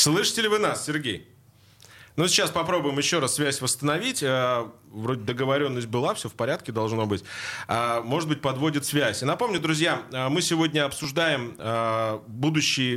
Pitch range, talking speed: 120-155 Hz, 145 wpm